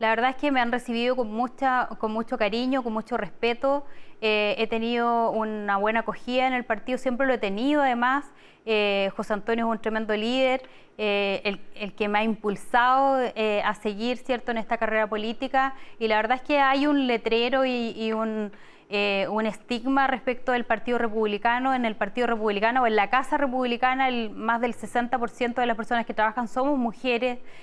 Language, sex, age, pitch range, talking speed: Spanish, female, 20-39, 220-255 Hz, 195 wpm